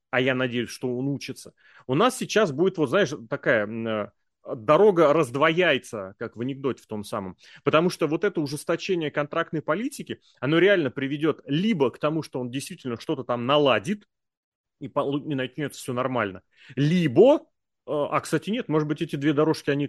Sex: male